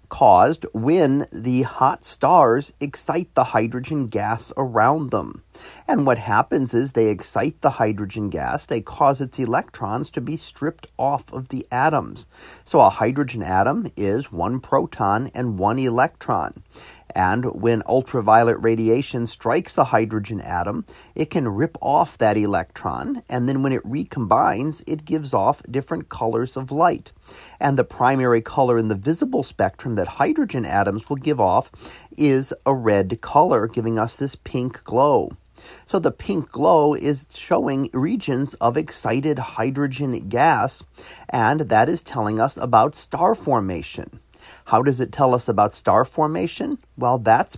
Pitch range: 110-145 Hz